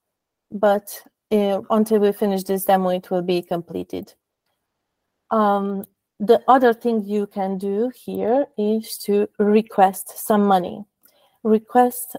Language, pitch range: English, 200-230 Hz